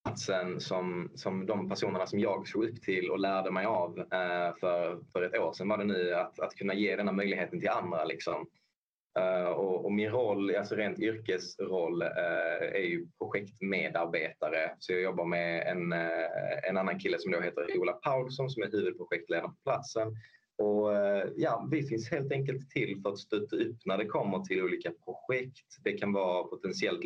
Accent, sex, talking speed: native, male, 190 wpm